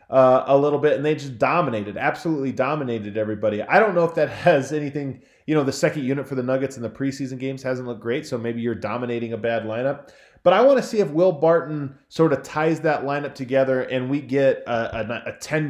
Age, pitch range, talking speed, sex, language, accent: 20-39, 120-155 Hz, 235 wpm, male, English, American